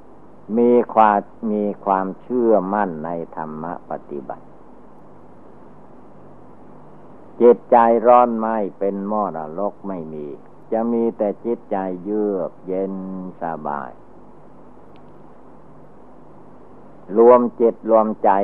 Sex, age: male, 60-79